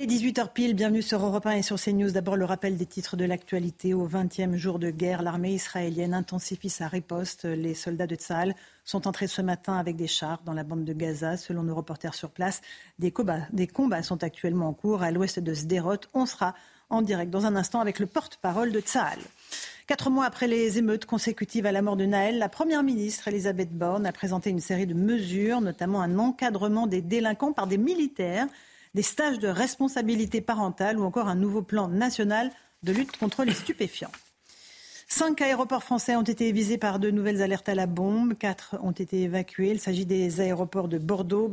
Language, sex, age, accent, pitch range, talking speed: French, female, 40-59, French, 180-225 Hz, 200 wpm